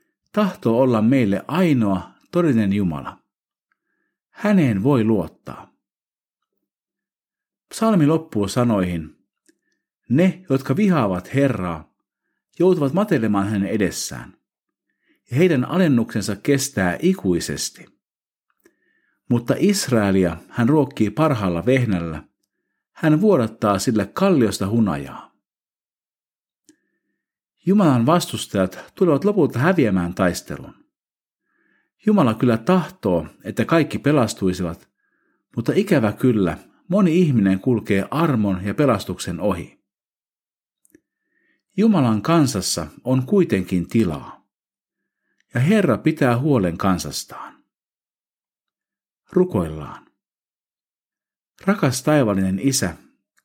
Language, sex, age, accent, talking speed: Finnish, male, 50-69, native, 80 wpm